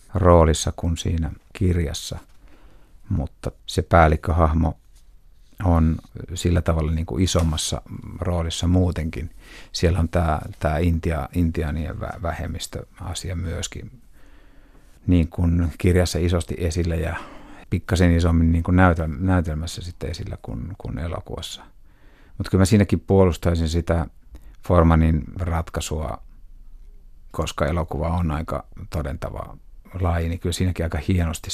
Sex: male